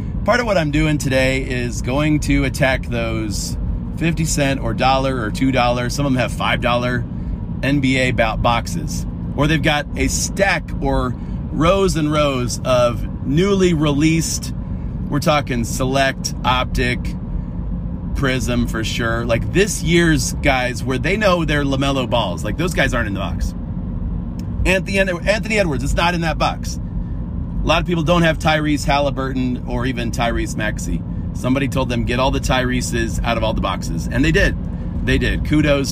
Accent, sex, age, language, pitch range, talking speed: American, male, 30-49, English, 110-155 Hz, 165 wpm